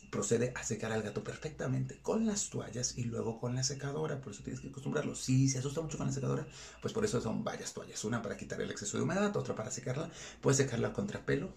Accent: Mexican